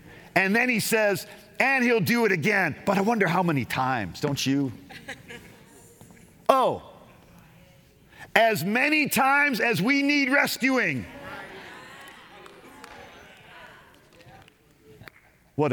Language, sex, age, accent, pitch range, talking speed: English, male, 50-69, American, 115-160 Hz, 100 wpm